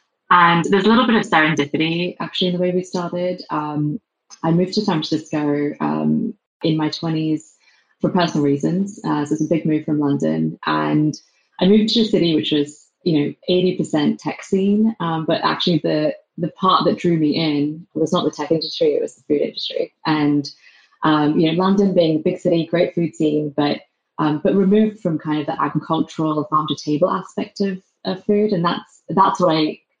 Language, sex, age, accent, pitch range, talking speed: English, female, 20-39, British, 150-180 Hz, 195 wpm